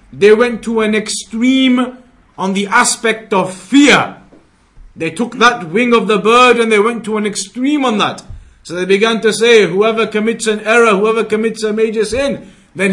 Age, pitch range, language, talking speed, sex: 50-69, 200-245 Hz, English, 185 wpm, male